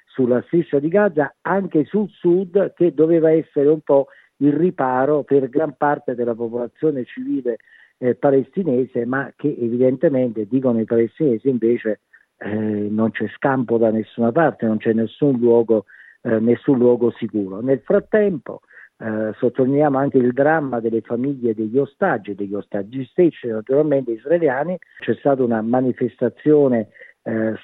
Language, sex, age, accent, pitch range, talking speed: Italian, male, 50-69, native, 115-150 Hz, 140 wpm